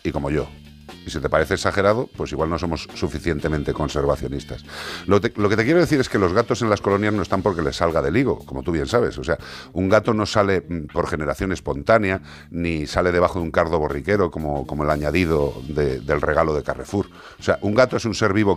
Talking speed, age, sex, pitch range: 225 wpm, 50-69, male, 80-105 Hz